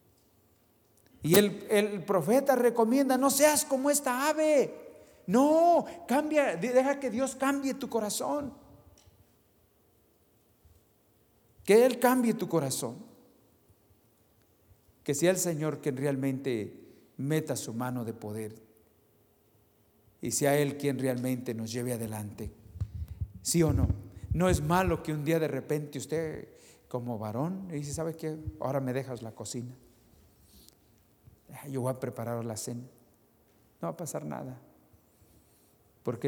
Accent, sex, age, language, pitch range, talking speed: Mexican, male, 50-69, English, 105-145 Hz, 125 wpm